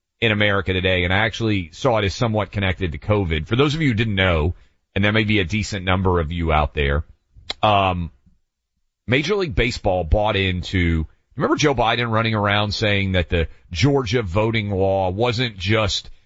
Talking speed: 185 wpm